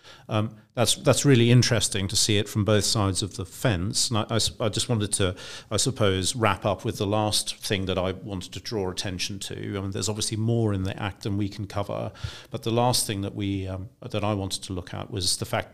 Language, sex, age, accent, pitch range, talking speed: English, male, 40-59, British, 100-115 Hz, 245 wpm